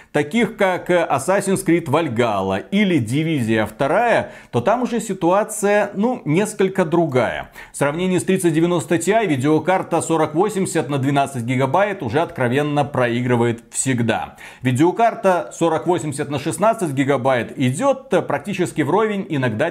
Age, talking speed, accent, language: 40-59, 115 wpm, native, Russian